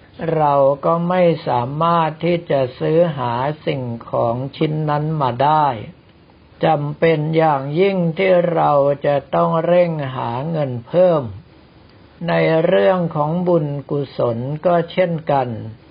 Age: 60-79